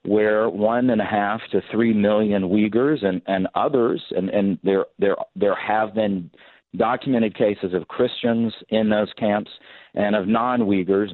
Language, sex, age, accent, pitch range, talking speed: English, male, 50-69, American, 100-120 Hz, 150 wpm